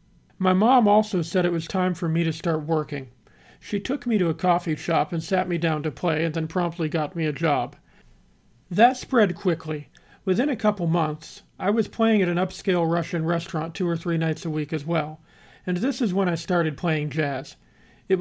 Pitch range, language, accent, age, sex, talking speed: 160-190 Hz, English, American, 40-59, male, 210 wpm